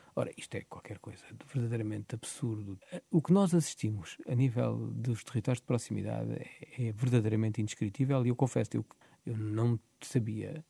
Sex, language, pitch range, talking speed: male, Portuguese, 115-140 Hz, 165 wpm